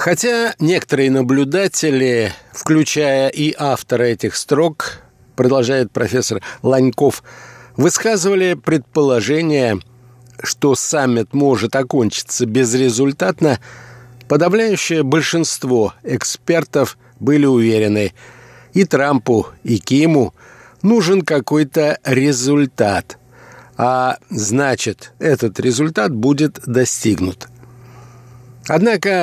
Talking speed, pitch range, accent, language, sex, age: 75 wpm, 125-150 Hz, native, Russian, male, 60-79